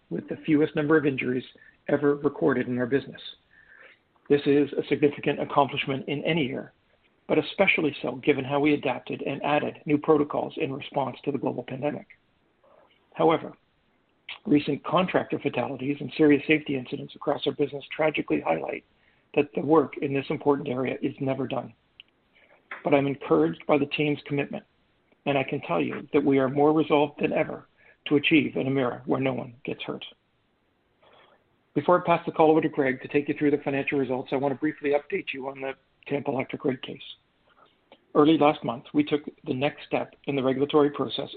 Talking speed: 185 wpm